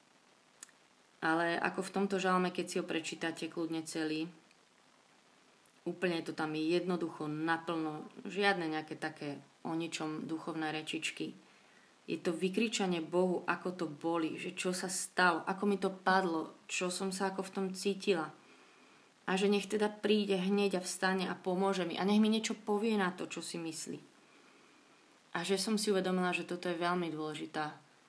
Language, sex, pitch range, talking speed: Slovak, female, 170-195 Hz, 165 wpm